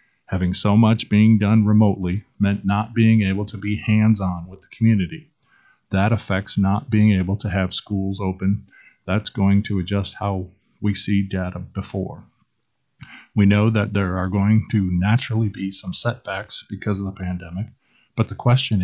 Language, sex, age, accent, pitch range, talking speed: English, male, 40-59, American, 100-115 Hz, 165 wpm